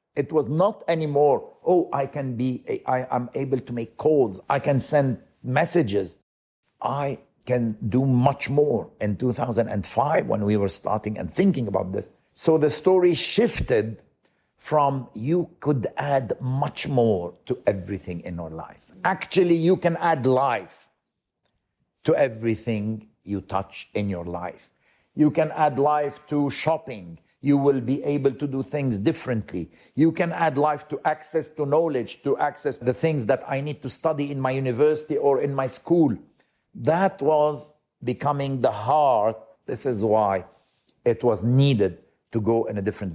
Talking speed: 165 wpm